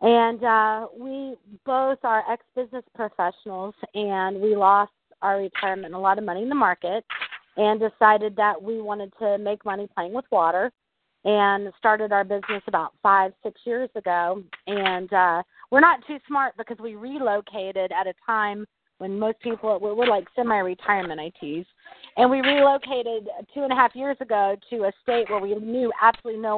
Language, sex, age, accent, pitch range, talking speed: English, female, 30-49, American, 200-240 Hz, 170 wpm